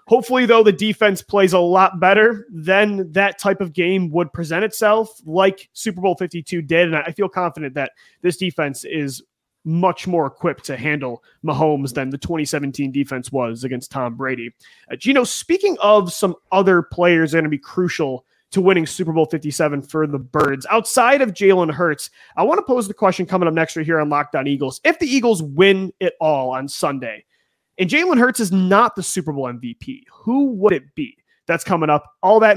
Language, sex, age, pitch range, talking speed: English, male, 30-49, 160-200 Hz, 200 wpm